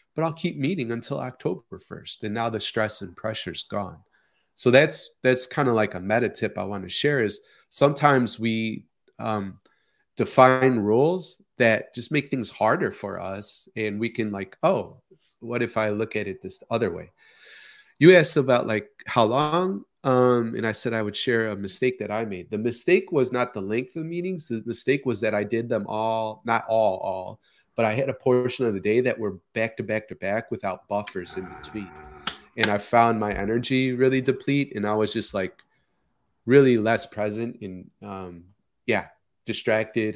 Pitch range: 105-130 Hz